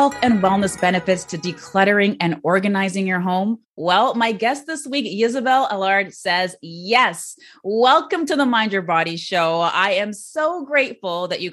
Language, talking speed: English, 160 wpm